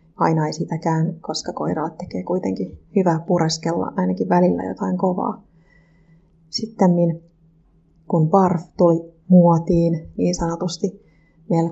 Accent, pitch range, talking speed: native, 165-180 Hz, 110 wpm